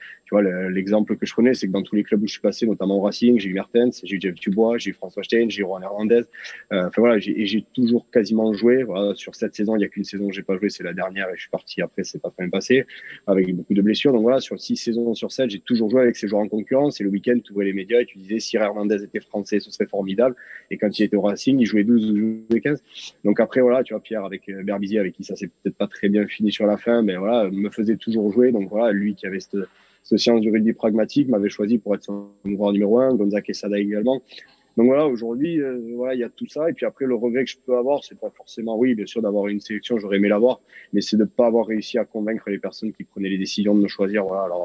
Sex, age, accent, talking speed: male, 30-49, French, 290 wpm